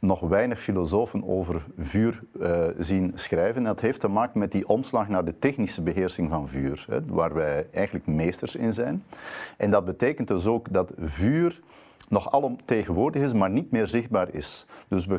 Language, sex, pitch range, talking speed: Dutch, male, 85-105 Hz, 180 wpm